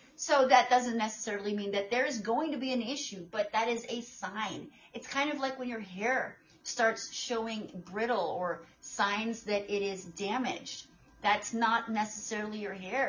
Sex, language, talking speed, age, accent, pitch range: female, English, 180 wpm, 30-49, American, 205-260 Hz